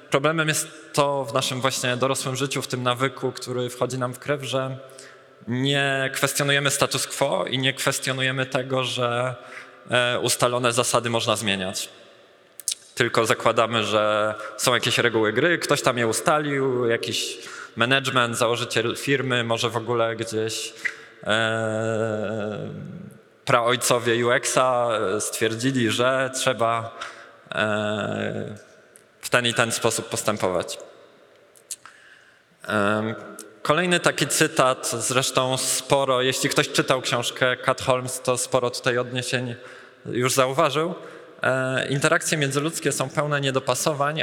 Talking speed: 110 wpm